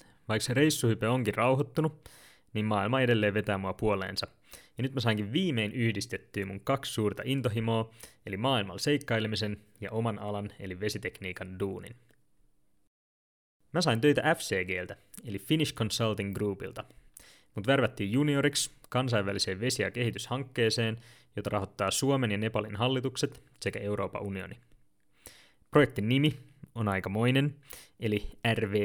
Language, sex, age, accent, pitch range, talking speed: Finnish, male, 20-39, native, 100-130 Hz, 125 wpm